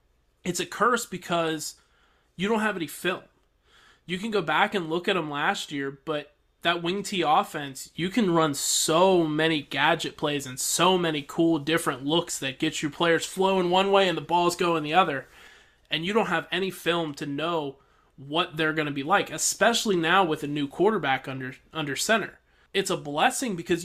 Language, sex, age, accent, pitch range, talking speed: English, male, 20-39, American, 150-180 Hz, 195 wpm